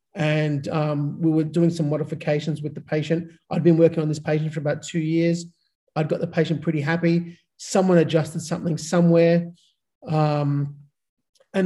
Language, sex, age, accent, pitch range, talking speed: English, male, 30-49, Australian, 150-165 Hz, 165 wpm